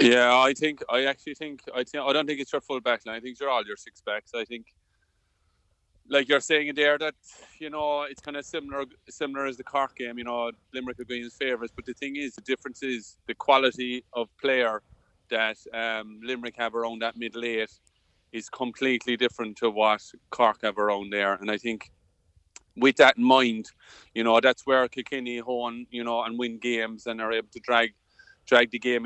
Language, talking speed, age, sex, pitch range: English, 210 wpm, 30-49, male, 110-125 Hz